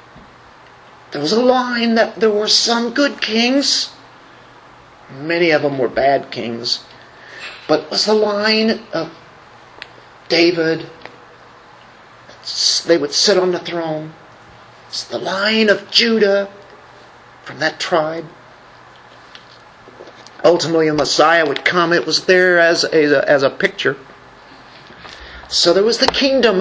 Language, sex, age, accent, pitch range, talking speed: English, male, 50-69, American, 170-235 Hz, 120 wpm